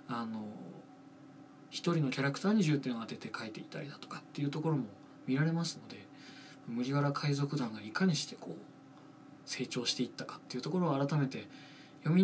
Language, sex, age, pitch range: Japanese, male, 20-39, 125-165 Hz